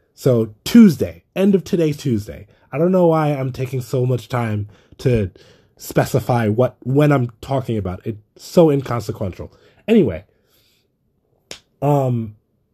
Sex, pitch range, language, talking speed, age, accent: male, 100-135 Hz, English, 130 wpm, 20-39, American